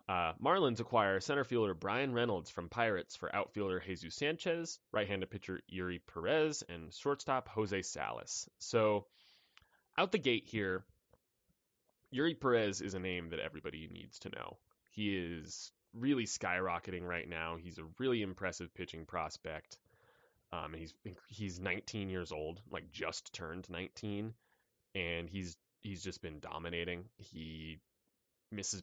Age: 20-39